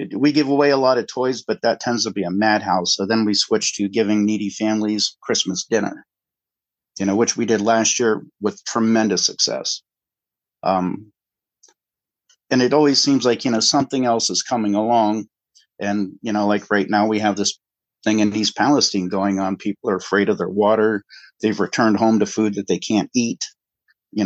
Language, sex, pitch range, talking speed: English, male, 100-120 Hz, 195 wpm